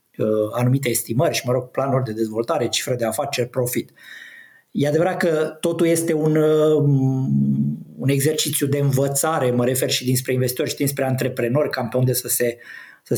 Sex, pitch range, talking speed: male, 125-155 Hz, 165 wpm